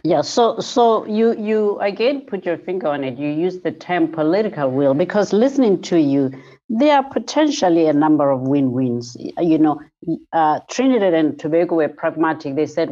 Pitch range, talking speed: 150-200 Hz, 175 wpm